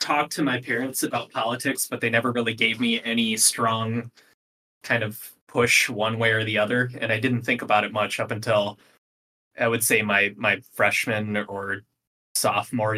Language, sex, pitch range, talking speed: English, male, 105-125 Hz, 180 wpm